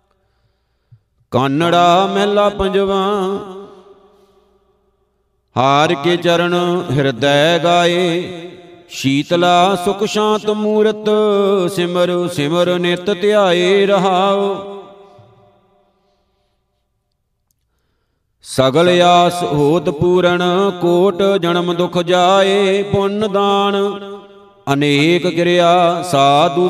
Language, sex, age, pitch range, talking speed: Punjabi, male, 50-69, 175-195 Hz, 65 wpm